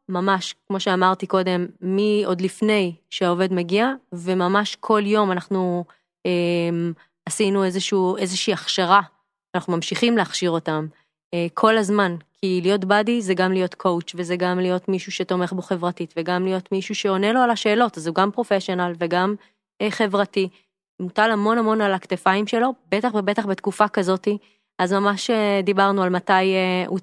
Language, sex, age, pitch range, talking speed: Hebrew, female, 20-39, 180-210 Hz, 150 wpm